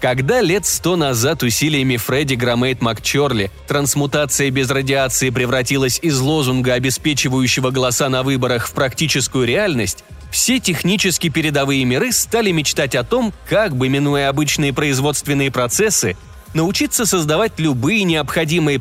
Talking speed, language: 125 wpm, Russian